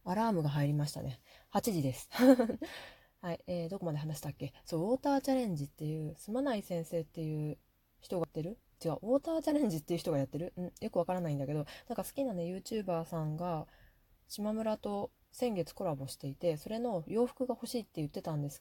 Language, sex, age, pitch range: Japanese, female, 20-39, 155-225 Hz